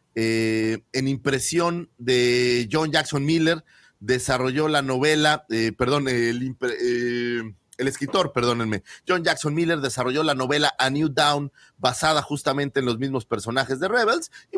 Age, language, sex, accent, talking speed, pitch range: 40-59, Spanish, male, Mexican, 150 wpm, 120-150 Hz